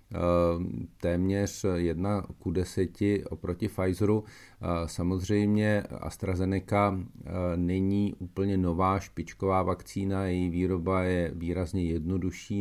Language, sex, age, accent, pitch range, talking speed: Czech, male, 40-59, native, 90-105 Hz, 85 wpm